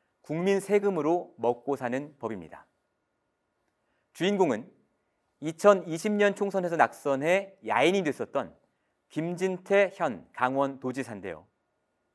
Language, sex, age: Korean, male, 40-59